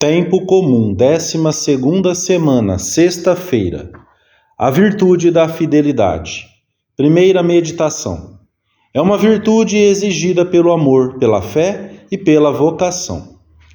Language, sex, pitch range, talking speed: English, male, 120-180 Hz, 95 wpm